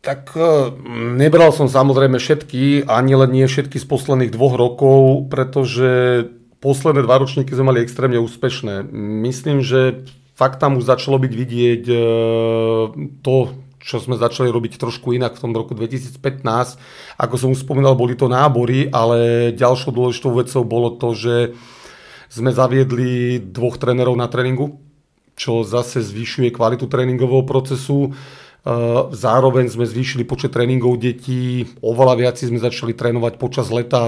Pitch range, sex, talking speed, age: 120-135 Hz, male, 140 wpm, 40-59